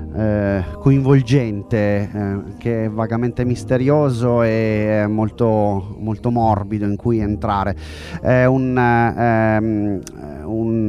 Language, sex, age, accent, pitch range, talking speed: Italian, male, 30-49, native, 100-130 Hz, 85 wpm